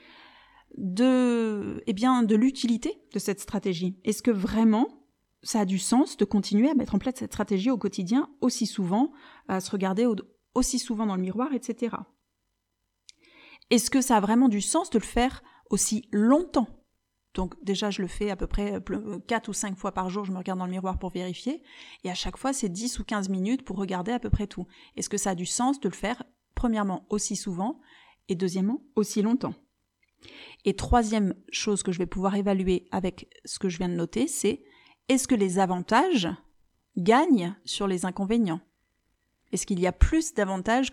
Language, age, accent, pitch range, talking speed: French, 30-49, French, 195-255 Hz, 190 wpm